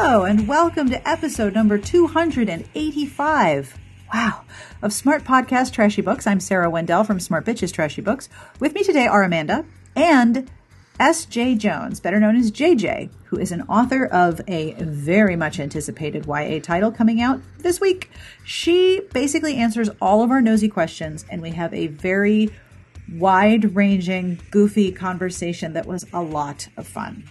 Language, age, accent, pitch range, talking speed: English, 40-59, American, 175-250 Hz, 155 wpm